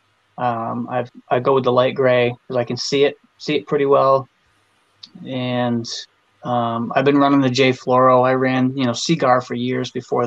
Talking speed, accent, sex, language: 195 wpm, American, male, English